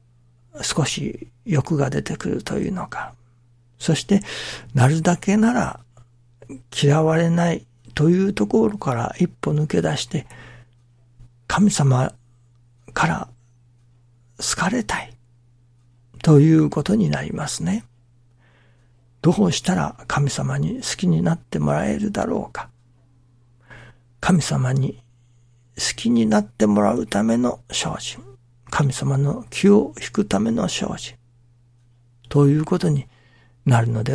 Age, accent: 60-79, native